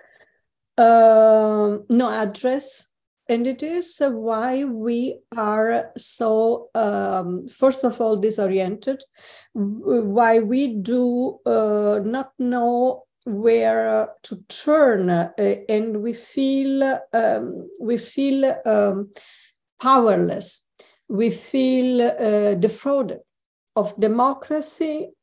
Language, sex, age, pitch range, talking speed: English, female, 50-69, 205-260 Hz, 95 wpm